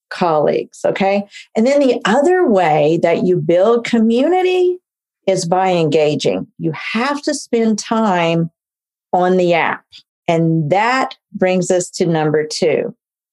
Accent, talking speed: American, 130 wpm